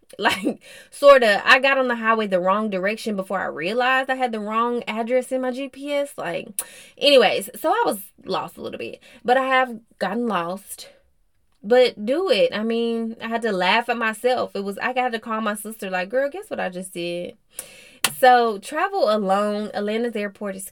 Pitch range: 190-245 Hz